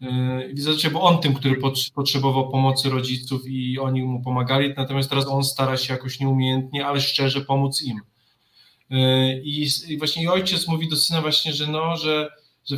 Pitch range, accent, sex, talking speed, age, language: 135-150 Hz, native, male, 170 wpm, 20-39, Polish